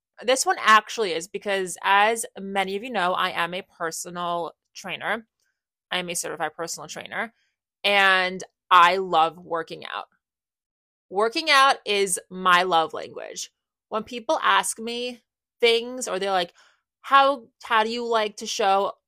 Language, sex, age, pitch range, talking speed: English, female, 20-39, 180-230 Hz, 150 wpm